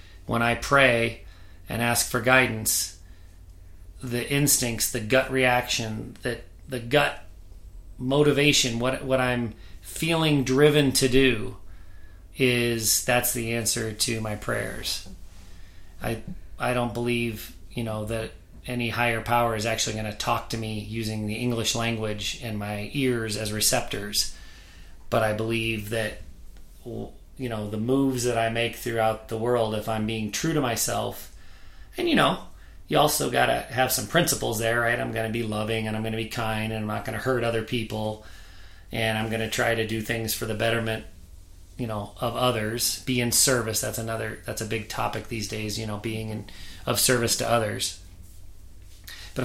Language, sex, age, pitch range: English, male, 30-49, 95-120 Hz